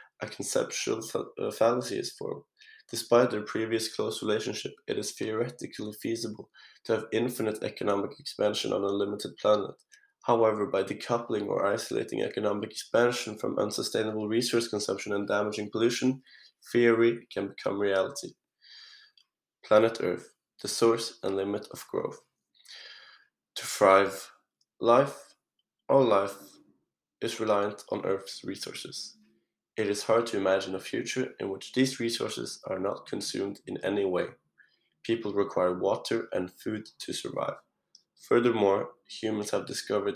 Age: 20-39